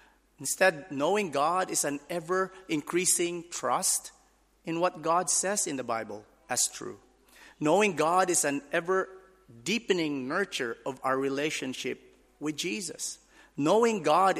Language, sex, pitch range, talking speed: English, male, 135-185 Hz, 120 wpm